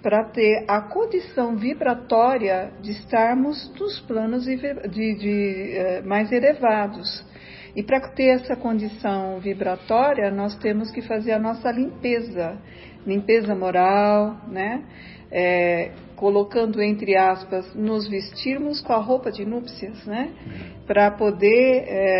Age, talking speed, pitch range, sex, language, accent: 50-69, 120 wpm, 200-245 Hz, female, Portuguese, Brazilian